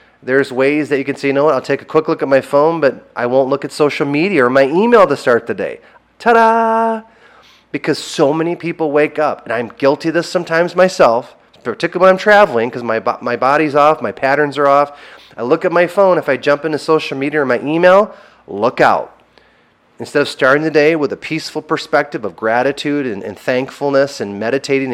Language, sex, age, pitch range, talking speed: English, male, 30-49, 135-175 Hz, 215 wpm